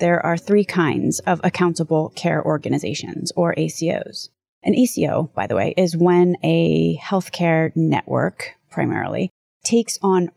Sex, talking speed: female, 135 wpm